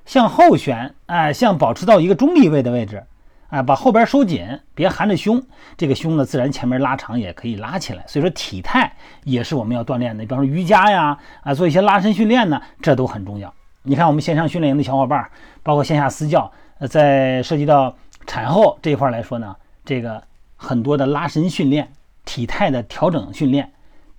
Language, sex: Chinese, male